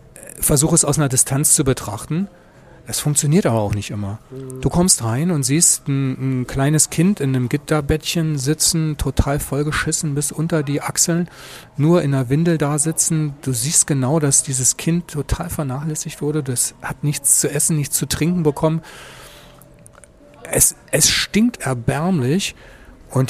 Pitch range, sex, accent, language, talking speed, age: 130-160 Hz, male, German, German, 155 wpm, 40-59